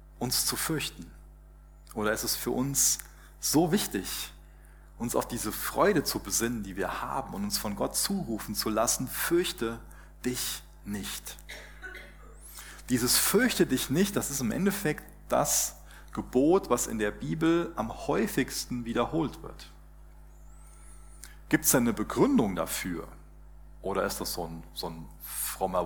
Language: German